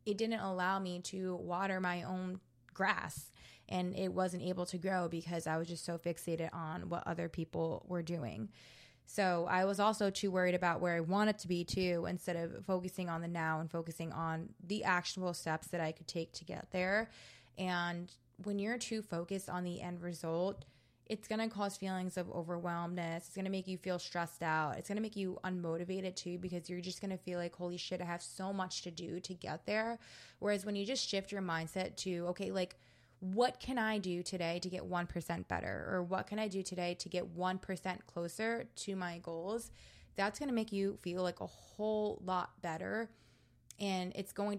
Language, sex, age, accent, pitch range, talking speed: English, female, 20-39, American, 170-190 Hz, 205 wpm